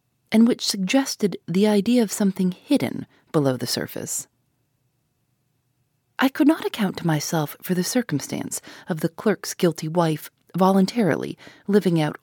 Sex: female